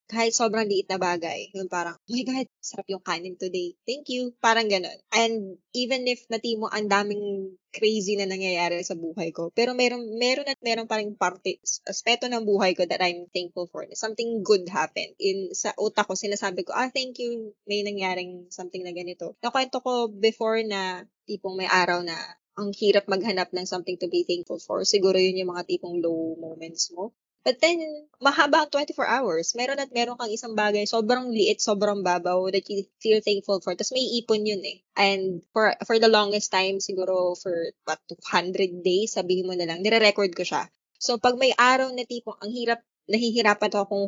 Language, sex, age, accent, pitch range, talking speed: Filipino, female, 20-39, native, 185-230 Hz, 190 wpm